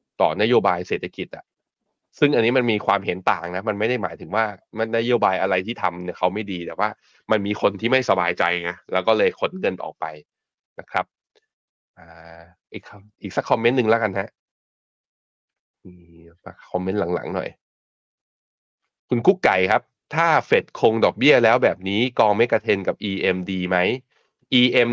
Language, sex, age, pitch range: Thai, male, 20-39, 90-115 Hz